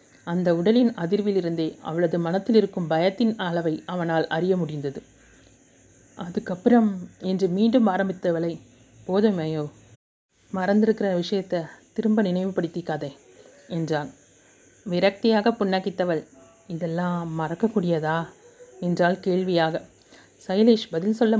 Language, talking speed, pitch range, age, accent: Tamil, 85 wpm, 165-200 Hz, 30-49, native